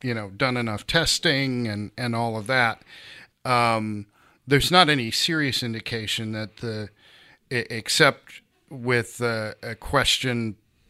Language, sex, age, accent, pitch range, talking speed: English, male, 40-59, American, 105-125 Hz, 125 wpm